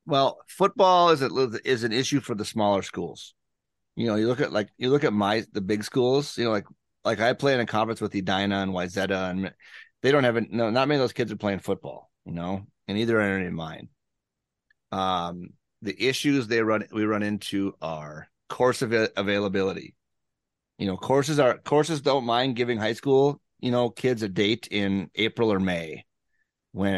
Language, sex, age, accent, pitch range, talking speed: English, male, 30-49, American, 100-125 Hz, 200 wpm